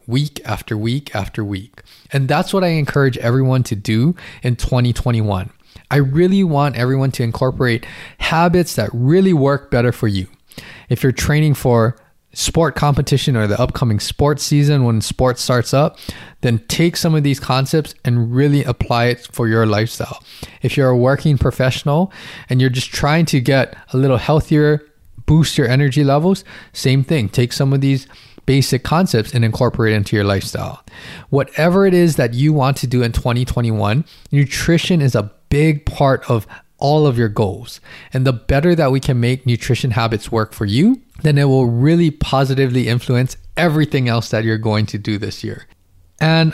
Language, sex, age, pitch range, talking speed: English, male, 20-39, 115-145 Hz, 175 wpm